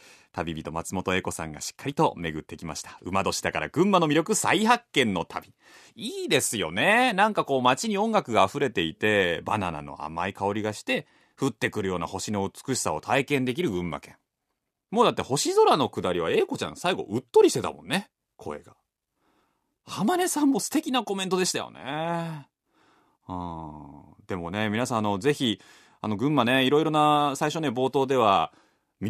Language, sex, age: Japanese, male, 30-49